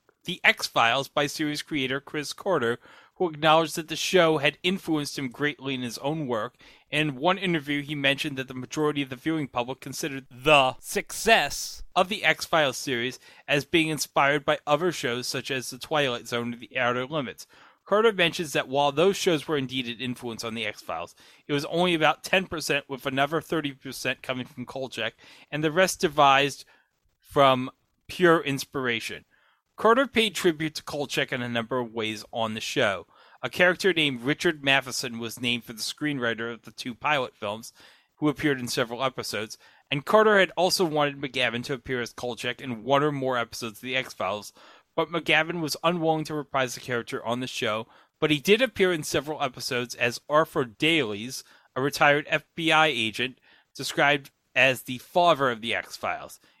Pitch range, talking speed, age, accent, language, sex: 125-155 Hz, 180 wpm, 30-49, American, English, male